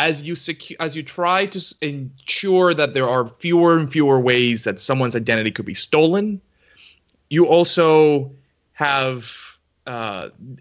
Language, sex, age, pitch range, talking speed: English, male, 30-49, 120-165 Hz, 140 wpm